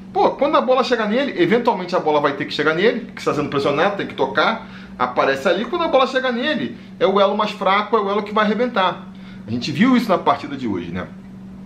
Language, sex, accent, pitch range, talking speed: Portuguese, male, Brazilian, 135-195 Hz, 245 wpm